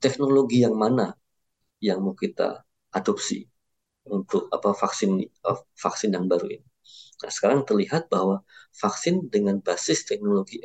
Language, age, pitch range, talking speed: Indonesian, 50-69, 100-135 Hz, 125 wpm